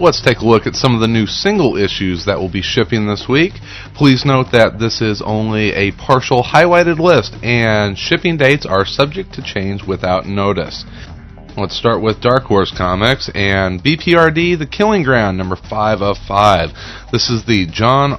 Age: 30-49